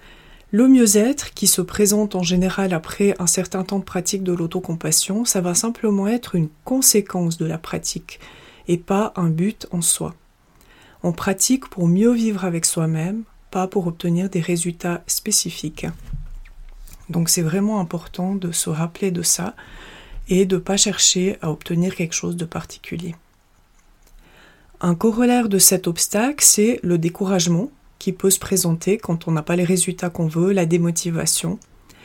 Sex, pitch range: female, 175-205 Hz